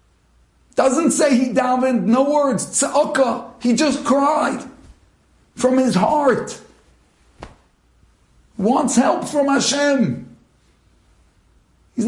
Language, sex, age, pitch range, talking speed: English, male, 50-69, 180-275 Hz, 95 wpm